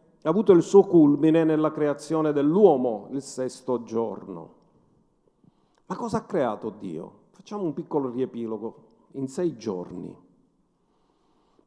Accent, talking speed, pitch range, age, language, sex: native, 125 wpm, 130-180 Hz, 50-69, Italian, male